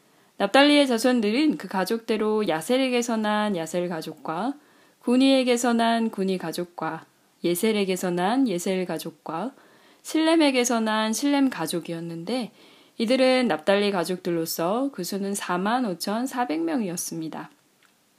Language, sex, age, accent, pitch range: Korean, female, 20-39, native, 180-255 Hz